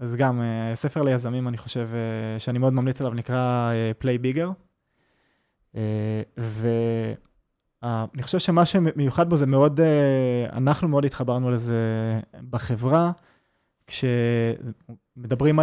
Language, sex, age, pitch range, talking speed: Hebrew, male, 20-39, 120-145 Hz, 95 wpm